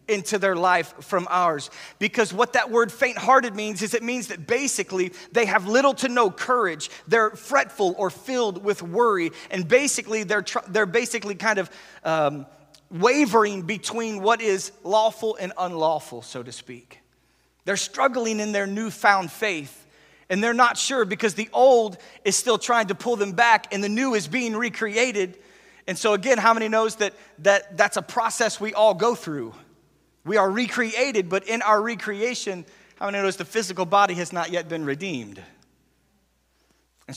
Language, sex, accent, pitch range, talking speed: English, male, American, 185-235 Hz, 175 wpm